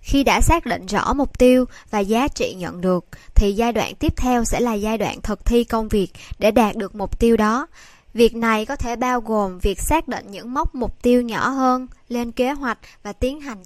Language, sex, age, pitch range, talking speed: Vietnamese, male, 10-29, 205-255 Hz, 230 wpm